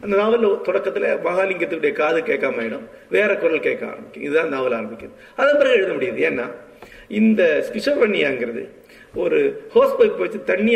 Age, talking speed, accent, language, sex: 50-69, 140 wpm, native, Tamil, male